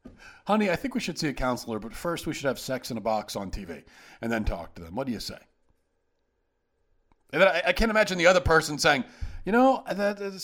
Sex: male